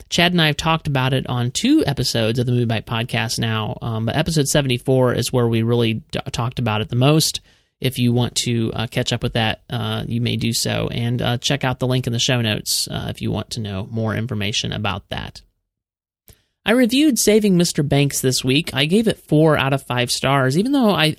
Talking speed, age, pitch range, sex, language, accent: 230 wpm, 30-49, 120-145 Hz, male, English, American